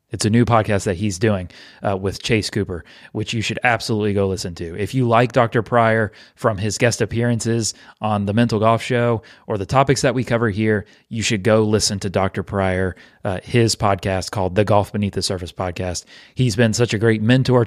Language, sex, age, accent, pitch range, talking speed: English, male, 30-49, American, 100-120 Hz, 210 wpm